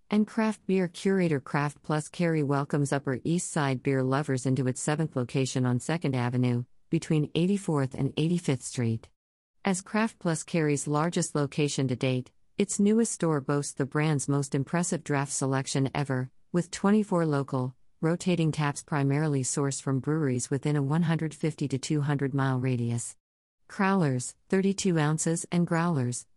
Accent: American